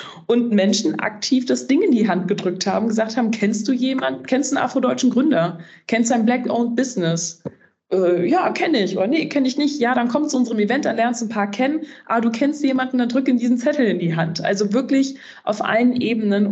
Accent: German